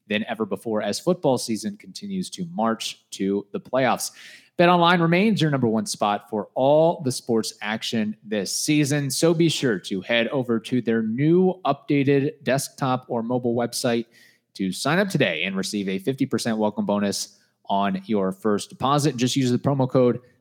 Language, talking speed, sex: English, 170 wpm, male